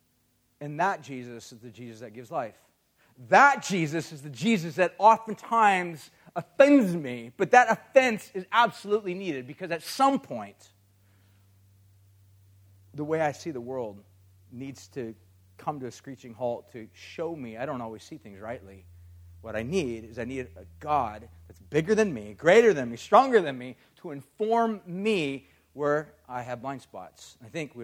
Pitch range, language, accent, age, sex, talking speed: 115-170 Hz, English, American, 40-59, male, 170 wpm